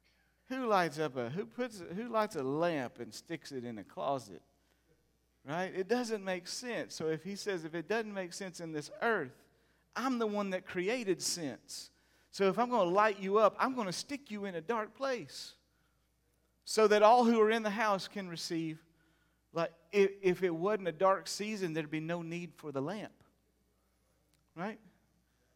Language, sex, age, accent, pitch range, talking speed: English, male, 40-59, American, 115-180 Hz, 195 wpm